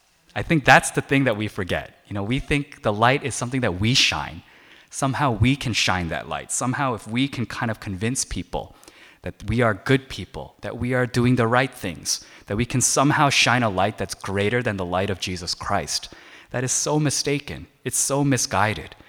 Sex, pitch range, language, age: male, 100-130 Hz, Korean, 20-39